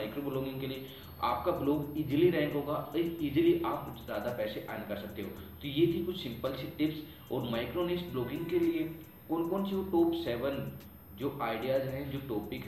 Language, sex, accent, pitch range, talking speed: Hindi, male, native, 115-150 Hz, 175 wpm